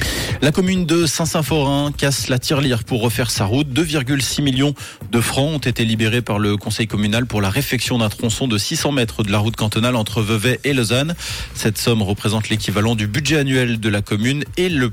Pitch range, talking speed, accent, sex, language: 110-135 Hz, 200 wpm, French, male, French